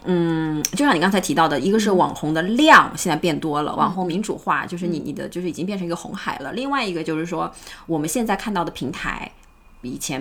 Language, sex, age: Chinese, female, 20-39